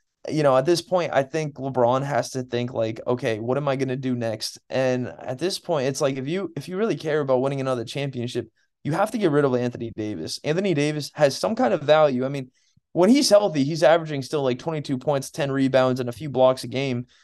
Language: English